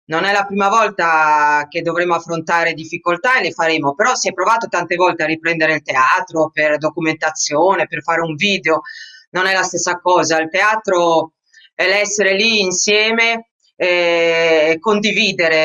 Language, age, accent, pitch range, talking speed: Italian, 30-49, native, 165-210 Hz, 155 wpm